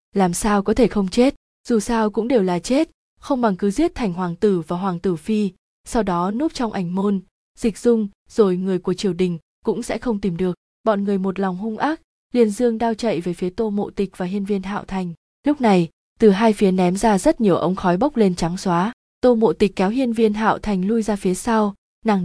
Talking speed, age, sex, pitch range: 240 wpm, 20-39, female, 185-225 Hz